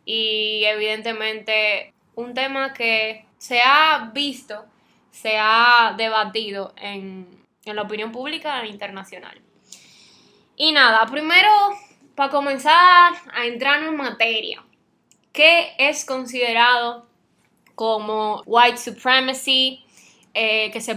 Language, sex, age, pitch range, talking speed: Spanish, female, 10-29, 215-280 Hz, 100 wpm